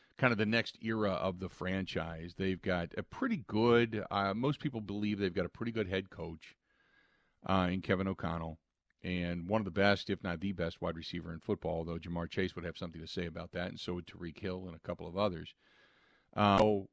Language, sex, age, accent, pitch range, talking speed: English, male, 40-59, American, 90-110 Hz, 215 wpm